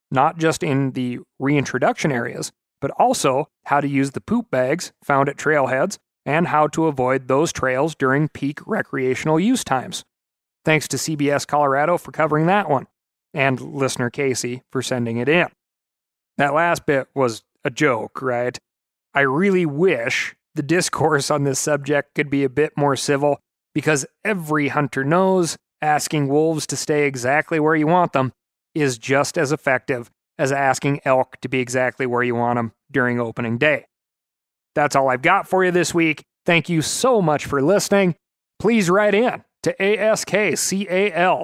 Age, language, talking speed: 30-49, English, 165 wpm